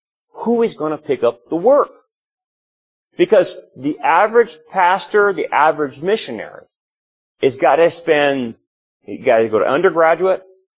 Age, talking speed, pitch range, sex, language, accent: 30-49, 140 wpm, 110-190 Hz, male, English, American